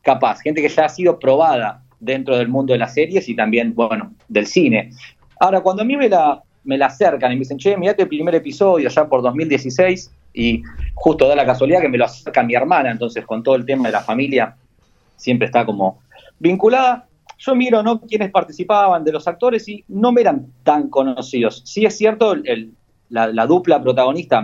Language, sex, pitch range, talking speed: Spanish, male, 120-180 Hz, 205 wpm